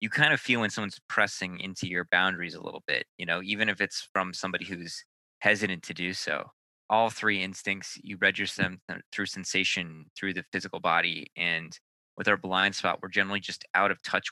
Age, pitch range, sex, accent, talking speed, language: 20-39, 90-100 Hz, male, American, 200 wpm, English